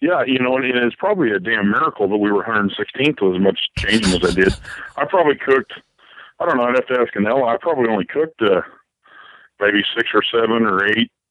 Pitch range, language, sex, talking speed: 105-125 Hz, English, male, 225 wpm